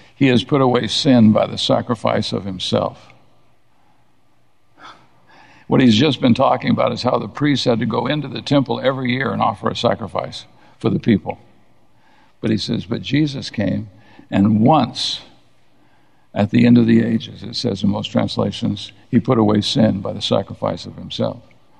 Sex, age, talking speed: male, 60-79, 175 wpm